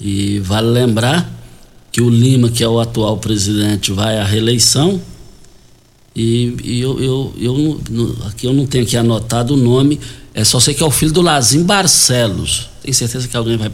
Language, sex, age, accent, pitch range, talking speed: Portuguese, male, 60-79, Brazilian, 115-140 Hz, 190 wpm